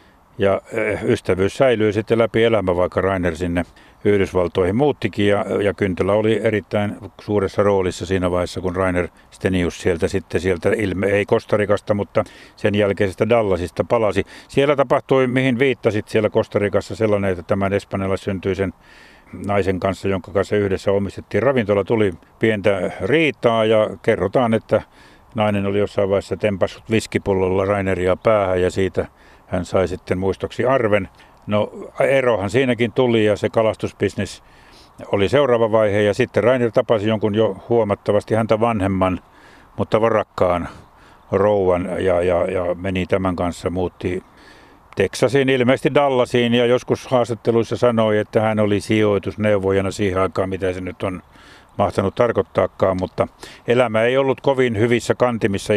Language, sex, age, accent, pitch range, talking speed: Finnish, male, 60-79, native, 95-115 Hz, 140 wpm